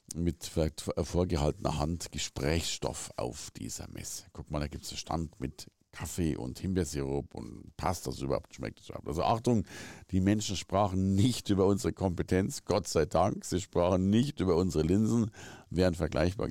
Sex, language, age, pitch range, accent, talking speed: male, German, 50-69, 80-105 Hz, German, 165 wpm